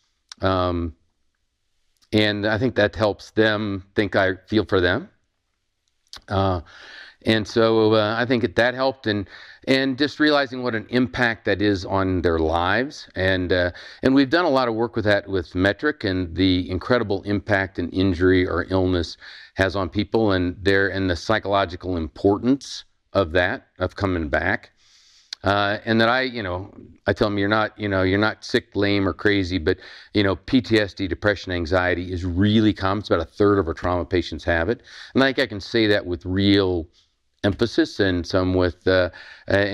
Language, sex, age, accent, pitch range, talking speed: English, male, 50-69, American, 90-110 Hz, 180 wpm